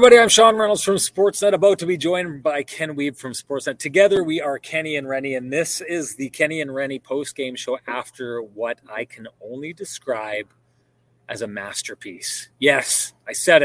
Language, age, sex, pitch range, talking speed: English, 30-49, male, 120-145 Hz, 190 wpm